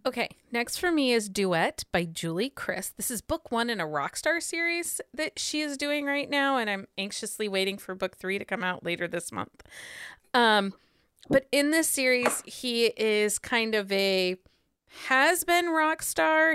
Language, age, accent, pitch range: English, 30-49, American, 190-245 Hz